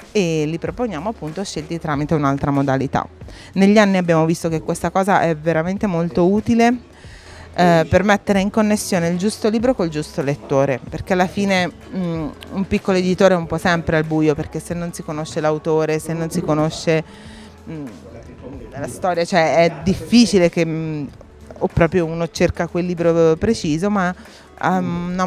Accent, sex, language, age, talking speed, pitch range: native, female, Italian, 30-49, 160 wpm, 155-185 Hz